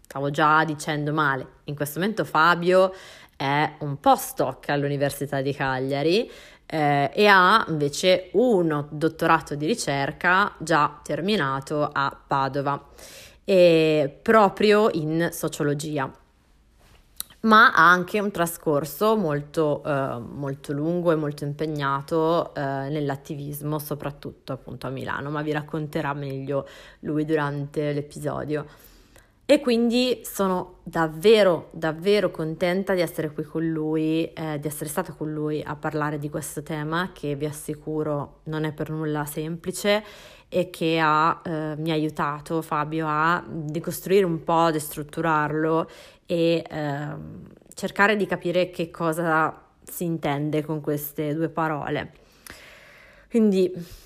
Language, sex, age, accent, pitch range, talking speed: Italian, female, 30-49, native, 145-175 Hz, 125 wpm